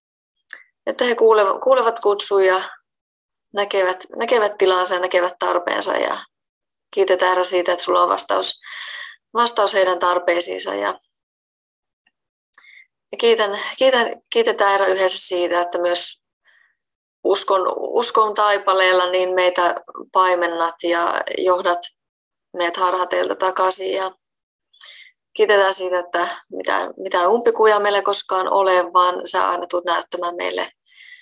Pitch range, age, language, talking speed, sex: 180-205 Hz, 20-39, Finnish, 100 wpm, female